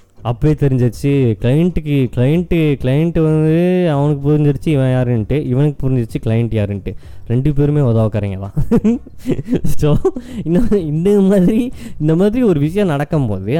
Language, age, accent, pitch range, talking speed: Tamil, 20-39, native, 110-165 Hz, 120 wpm